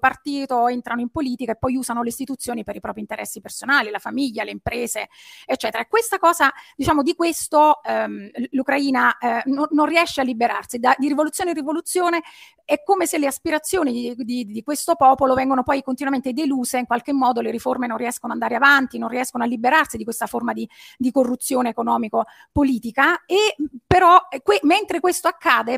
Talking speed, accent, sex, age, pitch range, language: 190 wpm, native, female, 30-49, 235-295 Hz, Italian